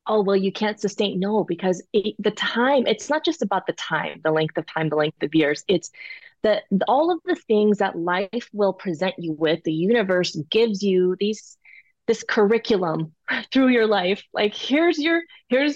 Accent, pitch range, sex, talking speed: American, 185-235 Hz, female, 185 wpm